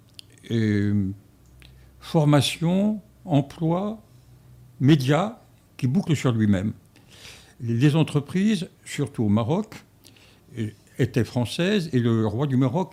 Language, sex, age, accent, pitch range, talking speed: French, male, 60-79, French, 105-145 Hz, 90 wpm